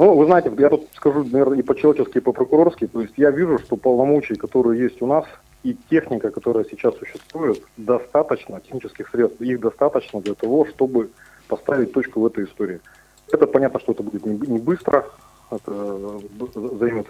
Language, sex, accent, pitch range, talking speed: Russian, male, native, 115-140 Hz, 170 wpm